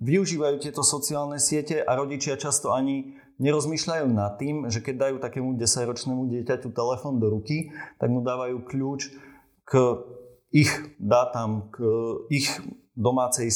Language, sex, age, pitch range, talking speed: Slovak, male, 30-49, 105-130 Hz, 135 wpm